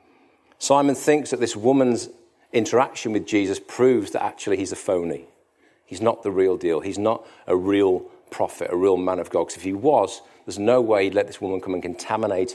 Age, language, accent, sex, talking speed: 40-59, English, British, male, 205 wpm